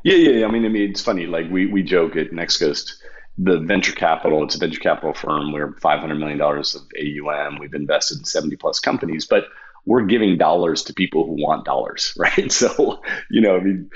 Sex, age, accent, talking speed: male, 40-59, American, 215 wpm